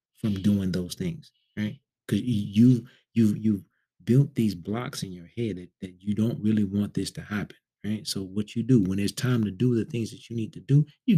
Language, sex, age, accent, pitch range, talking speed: English, male, 30-49, American, 95-125 Hz, 225 wpm